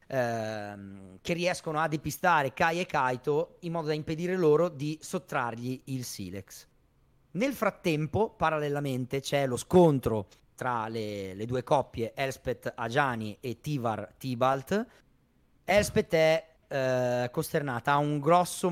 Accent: native